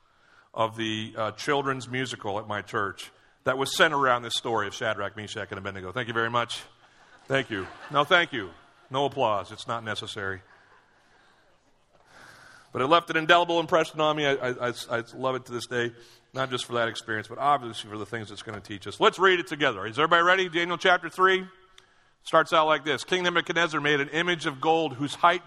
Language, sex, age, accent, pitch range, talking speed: English, male, 40-59, American, 120-160 Hz, 205 wpm